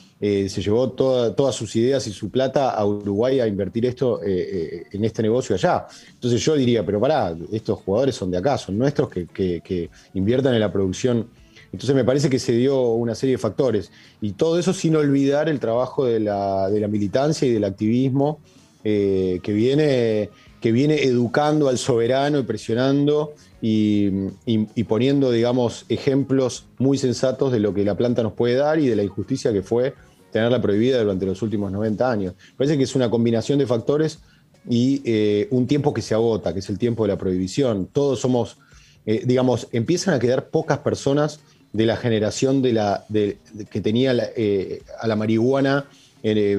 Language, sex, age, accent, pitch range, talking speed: Spanish, male, 30-49, Argentinian, 105-130 Hz, 190 wpm